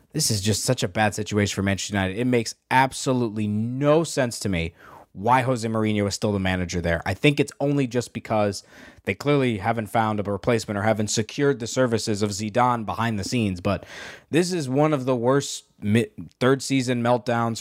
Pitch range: 110-155 Hz